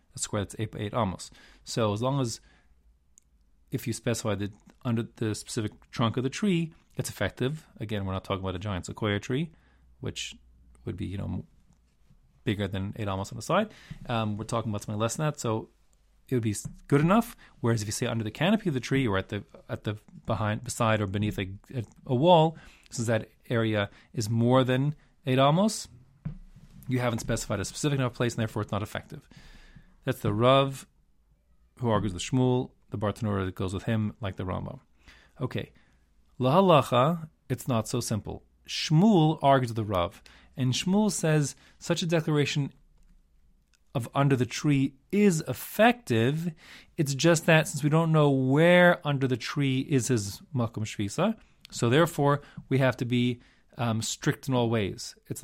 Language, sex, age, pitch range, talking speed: English, male, 30-49, 105-145 Hz, 180 wpm